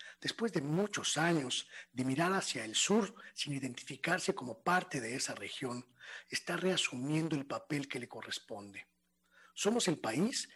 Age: 40-59